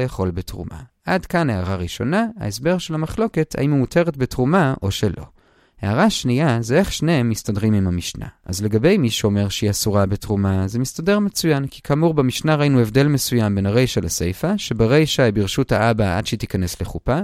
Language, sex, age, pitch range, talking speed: Hebrew, male, 30-49, 105-175 Hz, 175 wpm